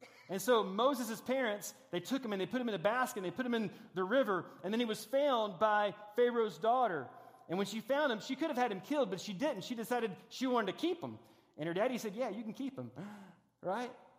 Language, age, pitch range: English, 30-49, 215-255 Hz